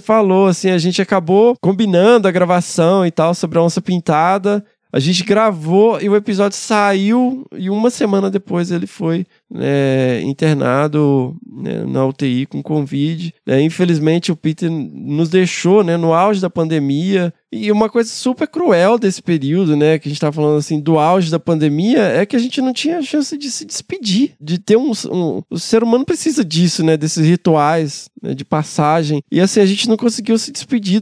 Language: Portuguese